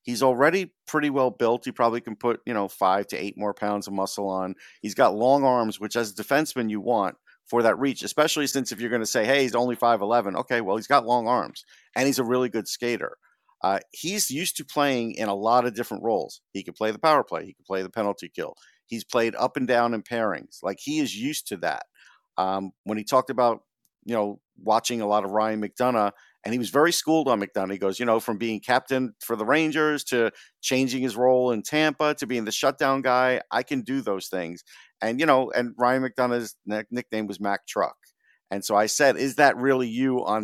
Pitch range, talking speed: 105-135 Hz, 230 wpm